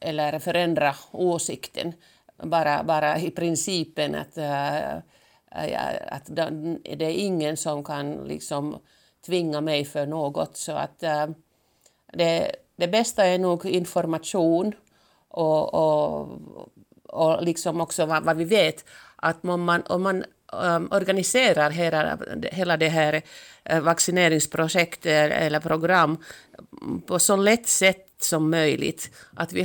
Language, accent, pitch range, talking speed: Swedish, Finnish, 160-190 Hz, 125 wpm